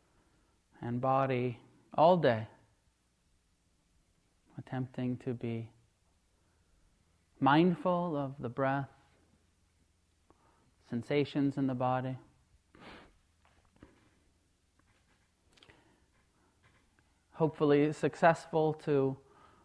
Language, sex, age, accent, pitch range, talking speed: English, male, 30-49, American, 95-155 Hz, 55 wpm